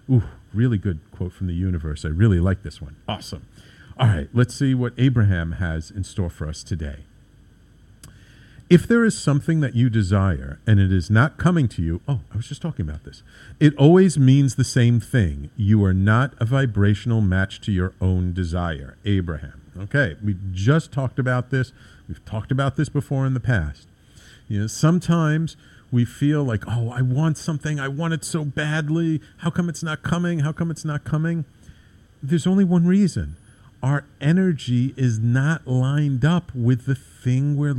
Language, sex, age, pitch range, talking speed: English, male, 50-69, 95-150 Hz, 185 wpm